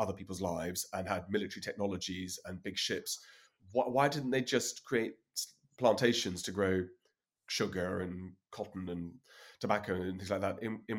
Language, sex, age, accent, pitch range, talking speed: English, male, 30-49, British, 95-115 Hz, 165 wpm